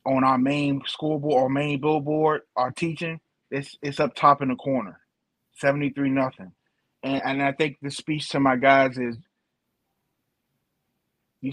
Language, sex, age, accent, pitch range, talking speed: English, male, 30-49, American, 130-155 Hz, 155 wpm